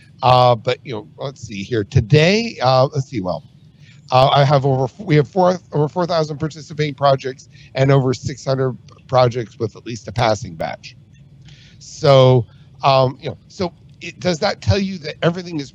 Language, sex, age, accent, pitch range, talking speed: English, male, 50-69, American, 125-150 Hz, 185 wpm